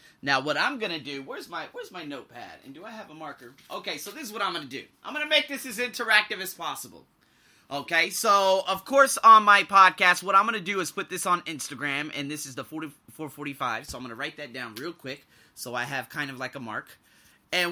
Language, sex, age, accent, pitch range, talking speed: English, male, 20-39, American, 145-200 Hz, 240 wpm